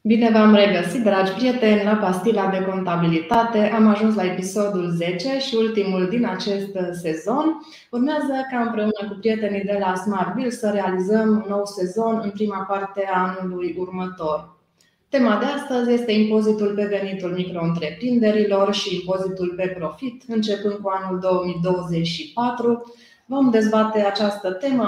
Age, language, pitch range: 20-39, Romanian, 185-220 Hz